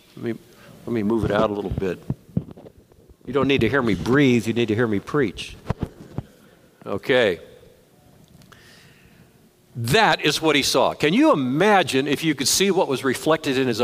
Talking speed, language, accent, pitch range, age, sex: 175 wpm, English, American, 130-215 Hz, 60-79, male